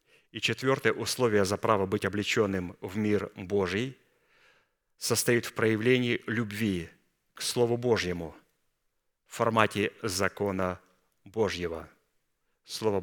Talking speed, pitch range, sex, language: 100 wpm, 100-120 Hz, male, Russian